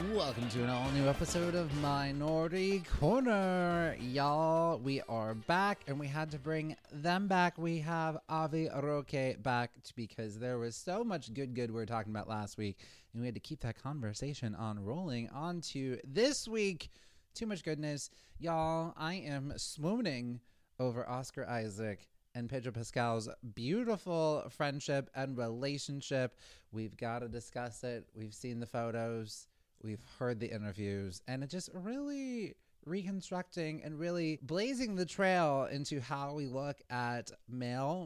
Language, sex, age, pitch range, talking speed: English, male, 30-49, 115-160 Hz, 155 wpm